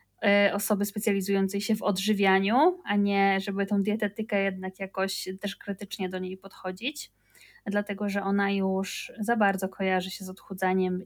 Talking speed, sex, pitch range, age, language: 145 wpm, female, 190-235 Hz, 20-39, Polish